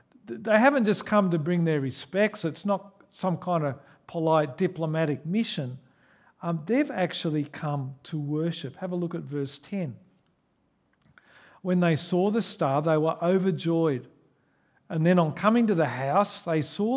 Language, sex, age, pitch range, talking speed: English, male, 50-69, 145-190 Hz, 160 wpm